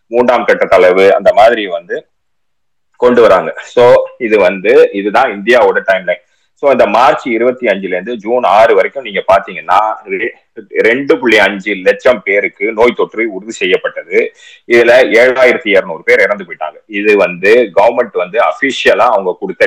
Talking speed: 140 wpm